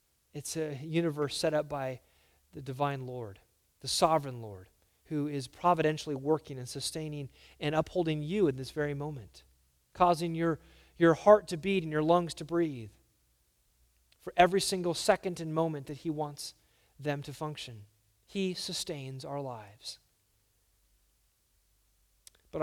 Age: 30-49